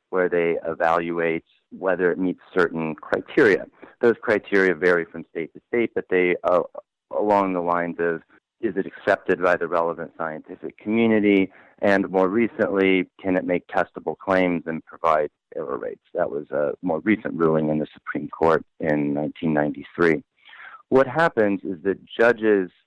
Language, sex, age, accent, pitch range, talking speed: English, male, 40-59, American, 85-105 Hz, 155 wpm